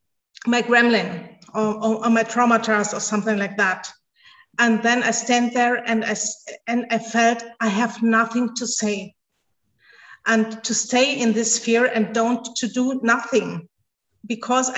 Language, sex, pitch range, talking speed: English, female, 220-240 Hz, 150 wpm